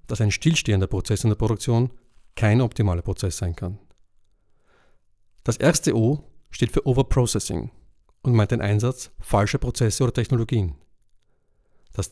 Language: German